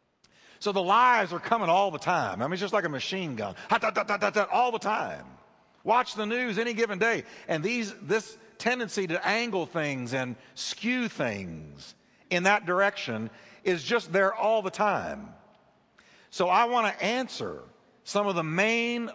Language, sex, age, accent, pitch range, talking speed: English, male, 50-69, American, 155-220 Hz, 165 wpm